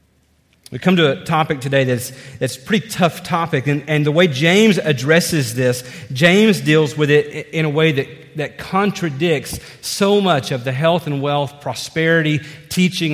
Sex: male